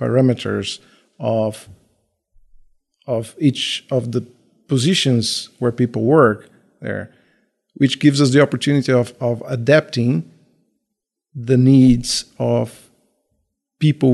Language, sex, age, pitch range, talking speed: Portuguese, male, 50-69, 115-140 Hz, 100 wpm